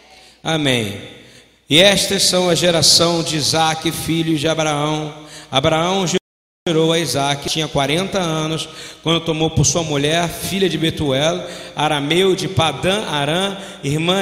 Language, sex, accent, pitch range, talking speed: Portuguese, male, Brazilian, 145-185 Hz, 130 wpm